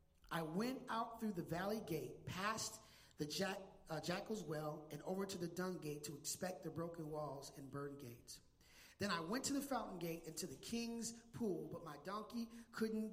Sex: male